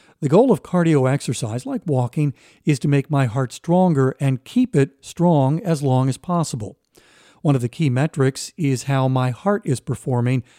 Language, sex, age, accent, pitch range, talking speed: English, male, 50-69, American, 130-160 Hz, 180 wpm